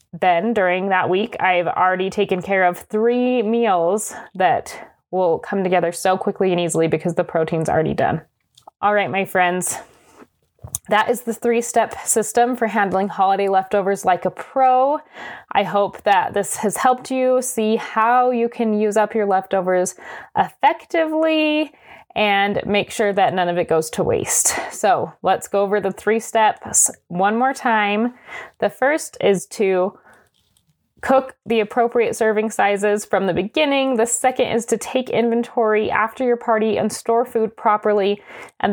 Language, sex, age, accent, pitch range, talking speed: English, female, 20-39, American, 190-235 Hz, 160 wpm